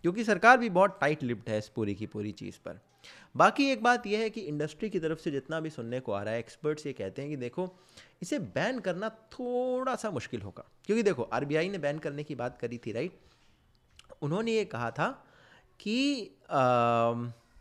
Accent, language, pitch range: native, Hindi, 115-175 Hz